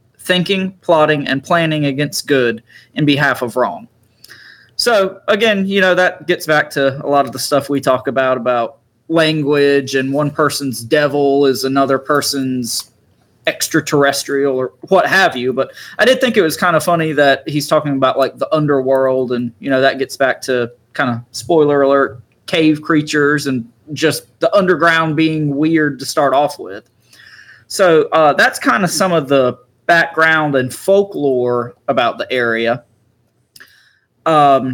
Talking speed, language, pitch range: 160 wpm, English, 130-165 Hz